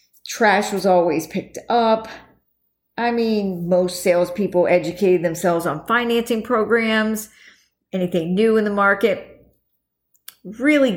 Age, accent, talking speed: 50-69, American, 110 wpm